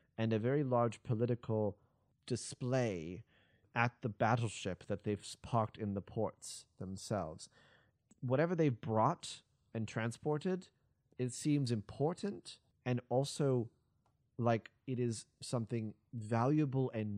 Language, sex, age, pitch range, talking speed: English, male, 30-49, 105-130 Hz, 110 wpm